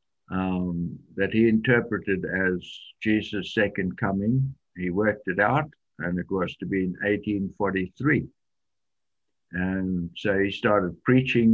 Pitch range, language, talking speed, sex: 90-110 Hz, English, 125 wpm, male